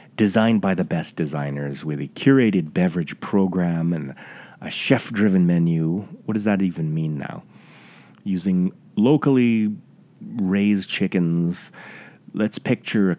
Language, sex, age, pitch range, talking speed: English, male, 30-49, 85-110 Hz, 125 wpm